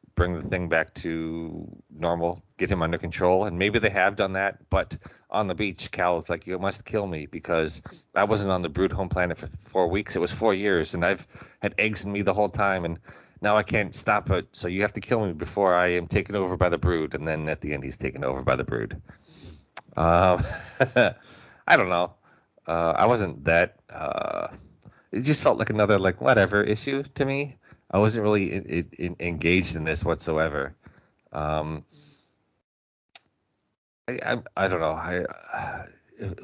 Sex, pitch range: male, 85-105 Hz